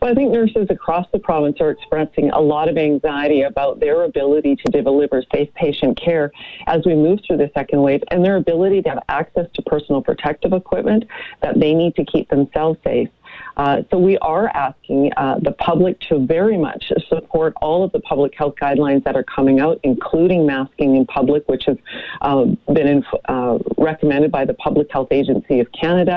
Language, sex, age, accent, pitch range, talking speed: English, female, 40-59, American, 145-180 Hz, 195 wpm